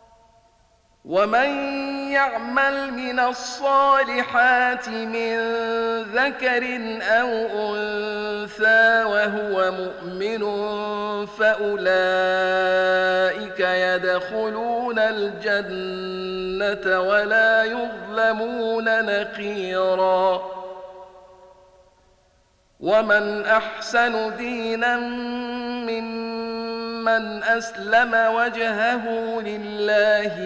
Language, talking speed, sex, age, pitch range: Arabic, 45 wpm, male, 50-69, 195-230 Hz